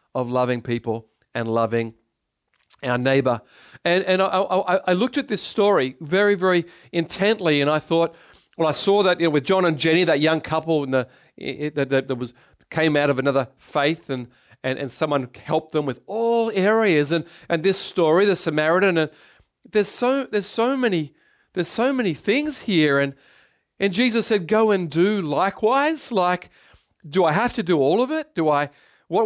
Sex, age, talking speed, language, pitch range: male, 40-59, 185 wpm, English, 145-195 Hz